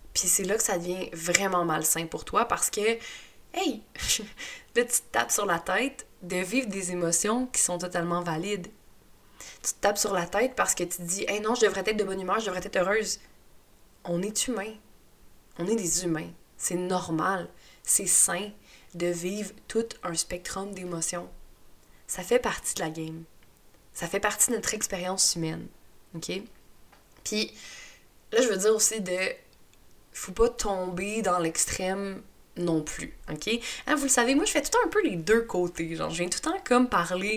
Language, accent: French, Canadian